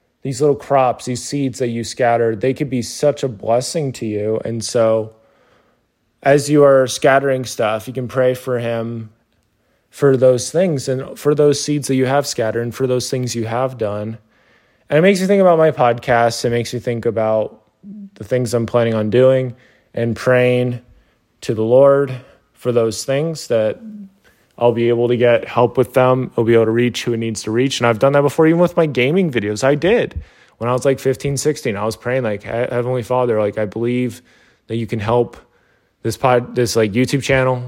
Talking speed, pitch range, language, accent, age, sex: 205 wpm, 115-135 Hz, English, American, 20-39, male